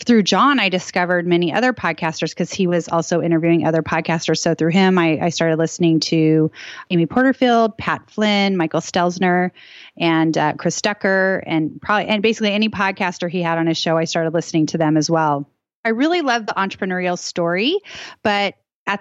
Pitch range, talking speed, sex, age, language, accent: 165-205 Hz, 185 wpm, female, 30-49, English, American